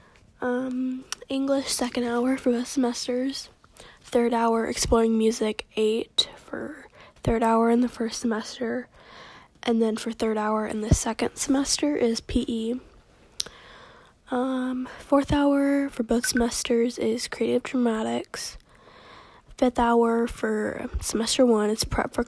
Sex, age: female, 10-29